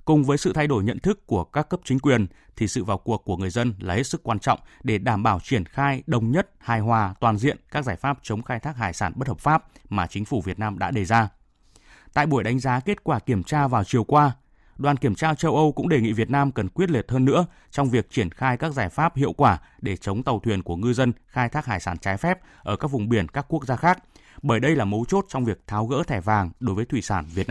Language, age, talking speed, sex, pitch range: Vietnamese, 20-39, 275 wpm, male, 105-145 Hz